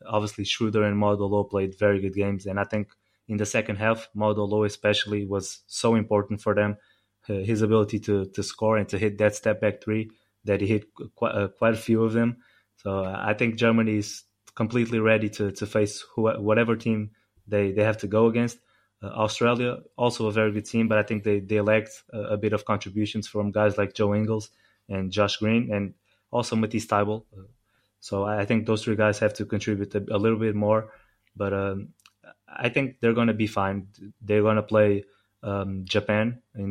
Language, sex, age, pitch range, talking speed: English, male, 20-39, 100-110 Hz, 205 wpm